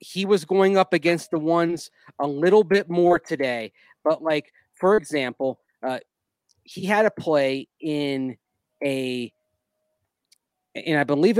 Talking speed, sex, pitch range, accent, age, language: 135 wpm, male, 135-165 Hz, American, 30-49, English